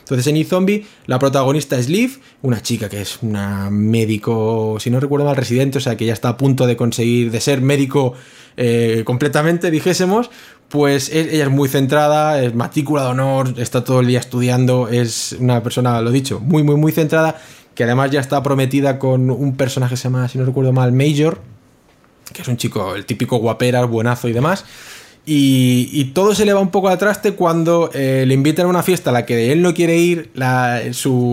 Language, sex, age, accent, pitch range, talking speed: English, male, 20-39, Spanish, 125-165 Hz, 205 wpm